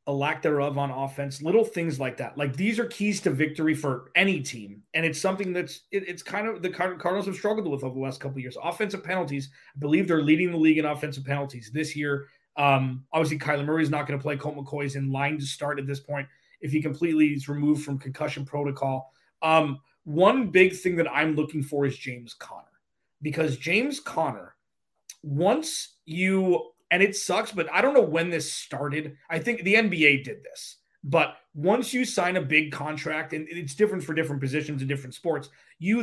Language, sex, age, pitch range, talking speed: English, male, 30-49, 140-185 Hz, 205 wpm